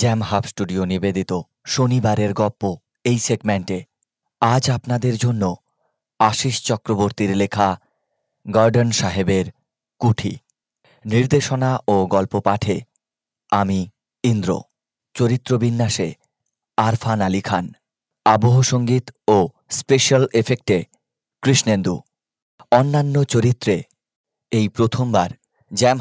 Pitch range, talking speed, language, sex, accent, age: 100-125 Hz, 90 wpm, Bengali, male, native, 30-49